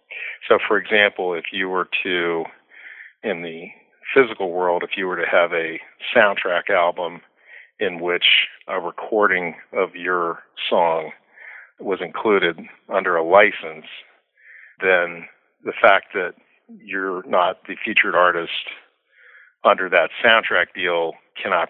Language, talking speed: English, 125 wpm